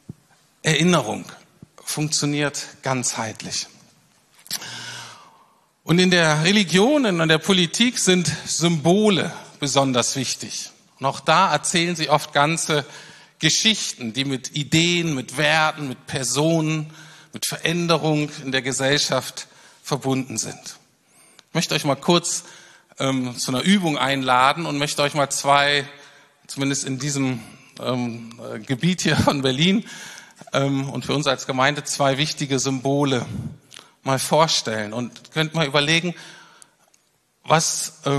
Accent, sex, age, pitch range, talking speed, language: German, male, 50-69, 135-165 Hz, 115 wpm, German